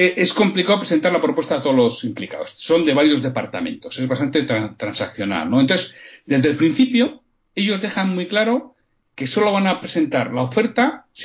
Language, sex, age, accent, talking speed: Spanish, male, 60-79, Spanish, 175 wpm